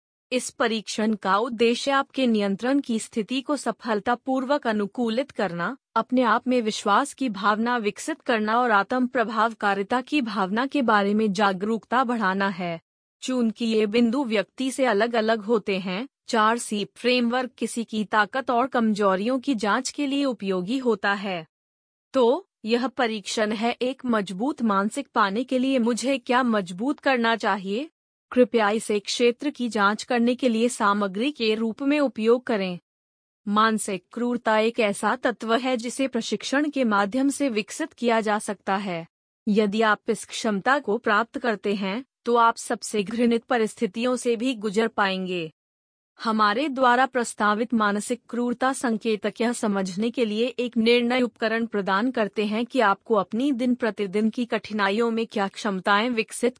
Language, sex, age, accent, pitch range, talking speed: Hindi, female, 30-49, native, 210-250 Hz, 155 wpm